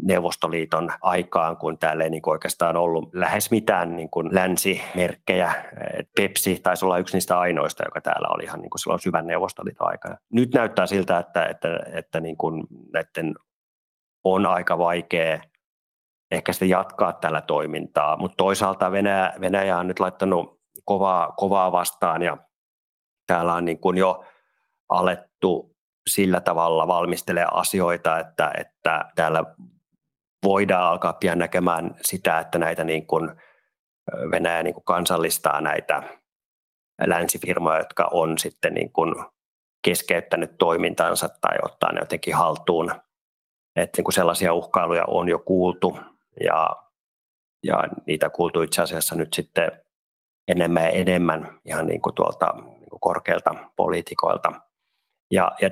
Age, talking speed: 30-49, 130 wpm